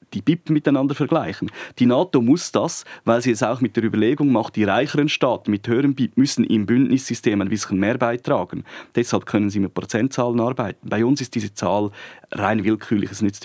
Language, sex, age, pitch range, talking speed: German, male, 30-49, 105-135 Hz, 195 wpm